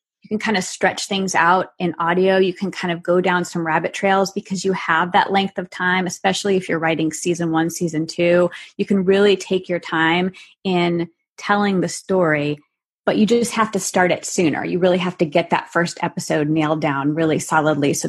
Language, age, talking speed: English, 20-39, 210 wpm